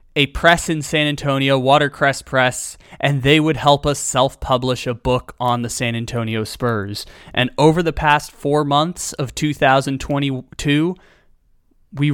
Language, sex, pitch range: English, male, 130-150 Hz